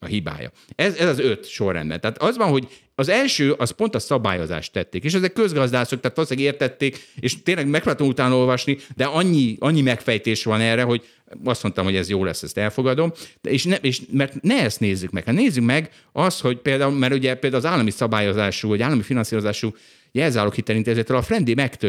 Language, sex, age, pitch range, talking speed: Hungarian, male, 50-69, 105-140 Hz, 205 wpm